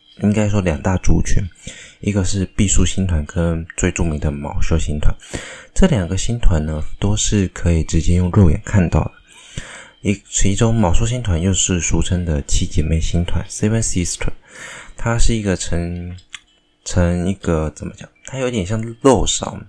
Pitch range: 80-105 Hz